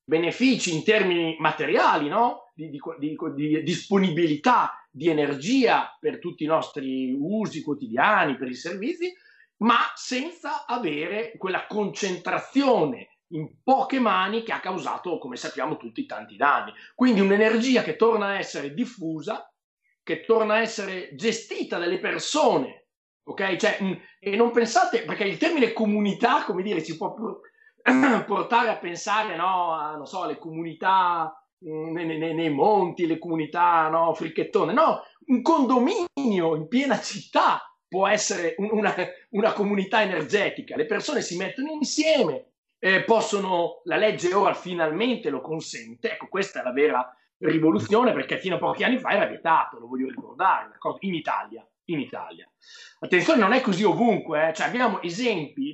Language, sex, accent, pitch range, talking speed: Italian, male, native, 165-235 Hz, 150 wpm